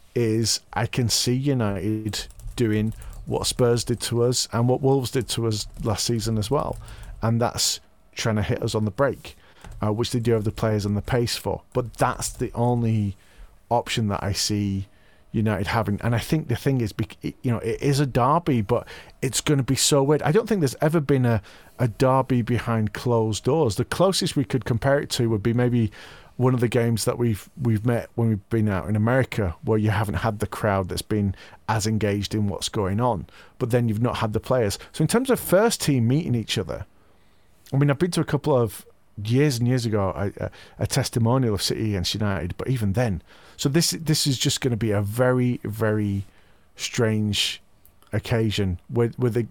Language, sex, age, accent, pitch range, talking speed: English, male, 40-59, British, 105-130 Hz, 210 wpm